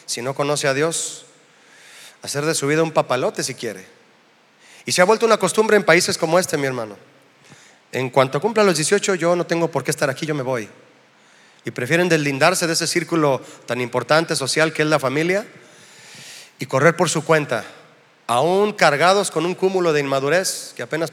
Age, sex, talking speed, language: 30-49, male, 190 wpm, Spanish